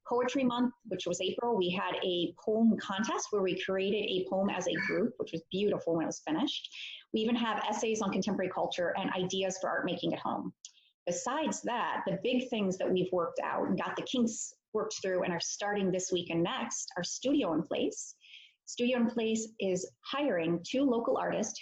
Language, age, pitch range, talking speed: English, 30-49, 185-235 Hz, 205 wpm